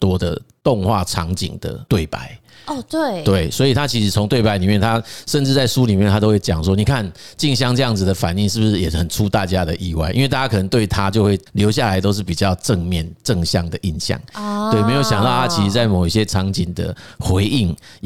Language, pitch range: Chinese, 95-115 Hz